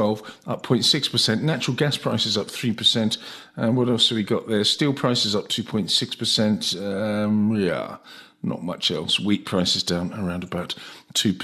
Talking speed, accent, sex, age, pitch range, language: 145 wpm, British, male, 50-69, 110-135 Hz, English